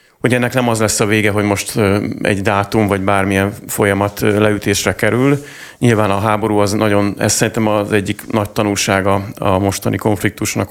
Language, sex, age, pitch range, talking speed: Hungarian, male, 30-49, 100-110 Hz, 170 wpm